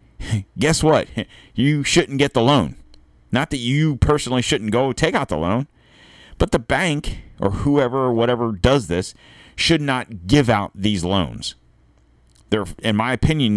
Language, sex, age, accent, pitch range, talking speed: English, male, 40-59, American, 95-130 Hz, 160 wpm